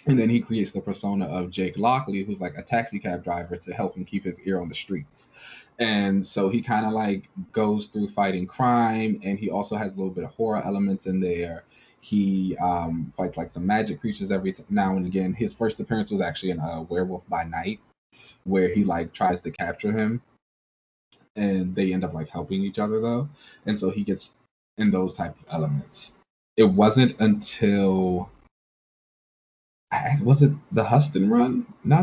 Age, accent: 20-39, American